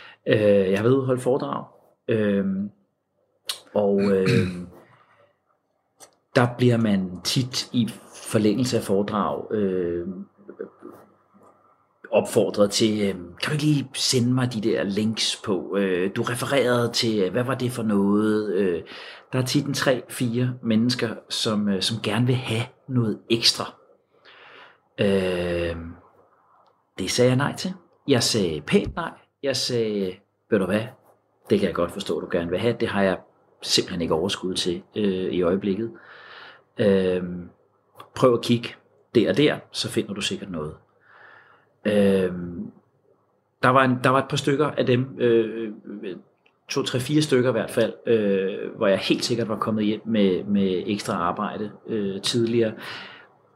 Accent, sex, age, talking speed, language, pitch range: native, male, 40-59, 150 wpm, Danish, 100-125 Hz